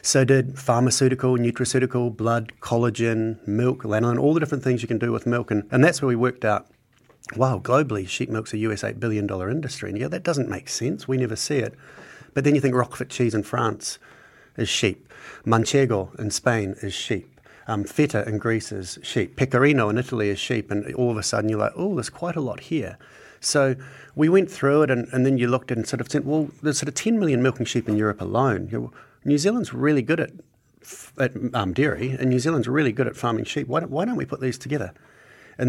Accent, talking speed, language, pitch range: Australian, 225 wpm, English, 105-130 Hz